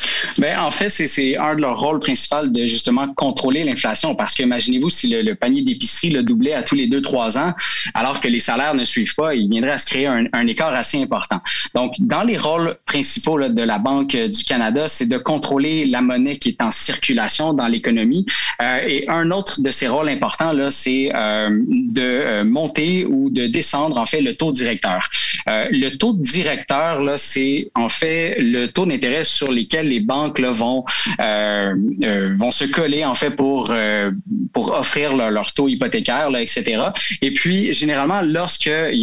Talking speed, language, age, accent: 195 wpm, French, 30-49, Canadian